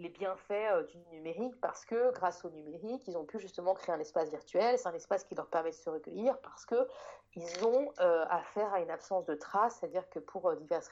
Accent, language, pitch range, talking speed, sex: French, French, 180-265 Hz, 225 wpm, female